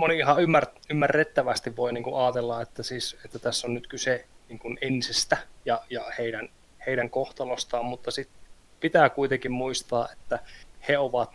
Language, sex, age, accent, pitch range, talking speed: Finnish, male, 20-39, native, 120-150 Hz, 150 wpm